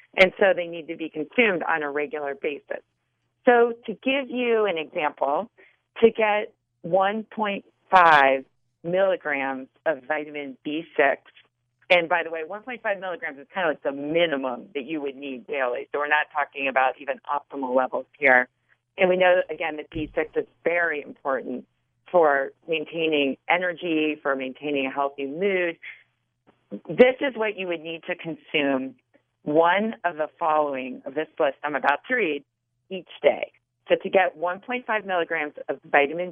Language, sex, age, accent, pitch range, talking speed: English, female, 40-59, American, 135-185 Hz, 155 wpm